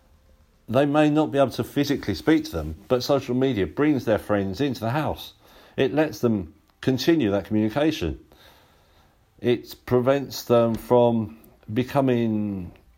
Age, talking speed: 50-69, 140 wpm